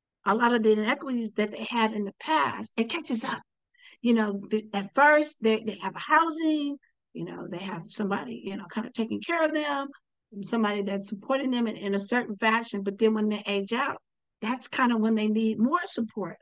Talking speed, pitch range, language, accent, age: 215 wpm, 215-285 Hz, English, American, 50-69